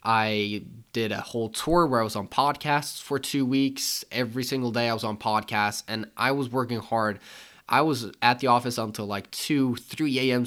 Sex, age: male, 20-39